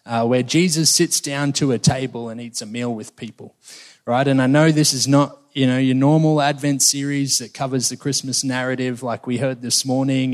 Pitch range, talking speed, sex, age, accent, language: 120-140 Hz, 215 wpm, male, 20-39, Australian, English